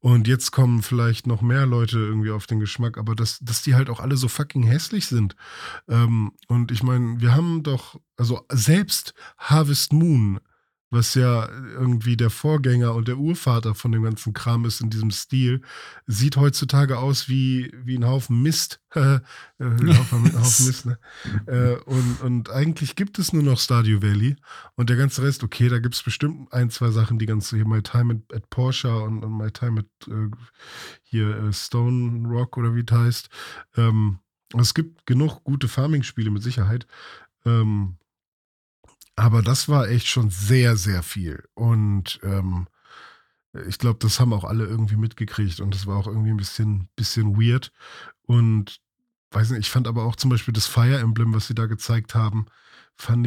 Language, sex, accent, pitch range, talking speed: German, male, German, 110-130 Hz, 175 wpm